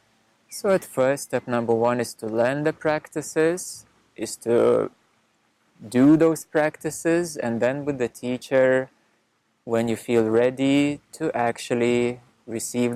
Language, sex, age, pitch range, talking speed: English, male, 20-39, 115-145 Hz, 130 wpm